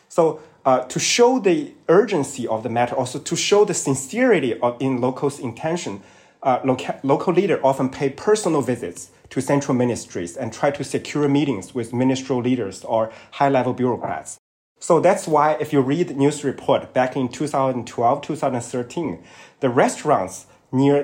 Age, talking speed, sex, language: 30-49, 160 wpm, male, English